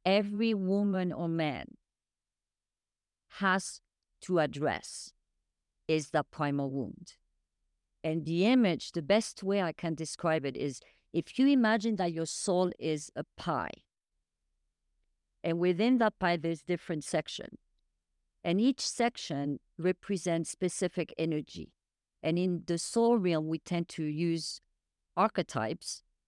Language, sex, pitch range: English, female, 125-180 Hz